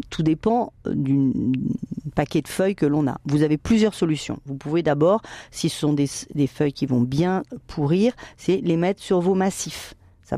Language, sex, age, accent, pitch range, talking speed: French, female, 40-59, French, 145-195 Hz, 190 wpm